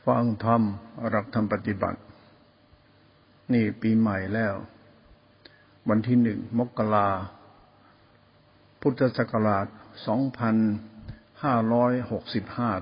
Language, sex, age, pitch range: Thai, male, 60-79, 105-120 Hz